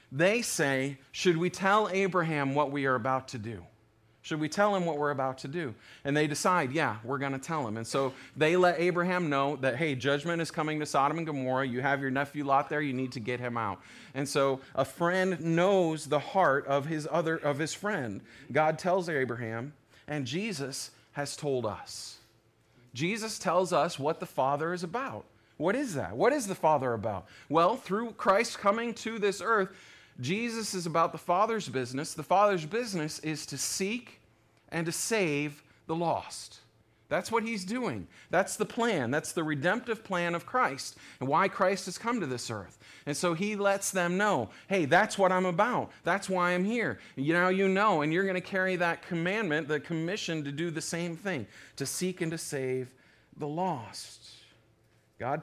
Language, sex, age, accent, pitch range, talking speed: English, male, 30-49, American, 130-185 Hz, 195 wpm